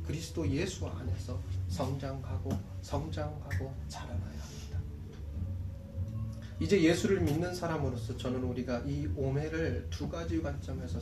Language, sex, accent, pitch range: Korean, male, native, 85-145 Hz